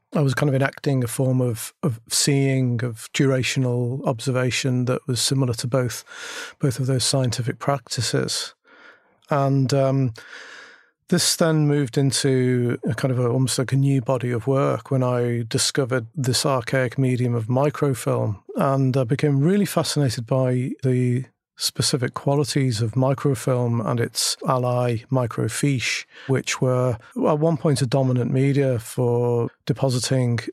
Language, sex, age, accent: English, male, 50-69, British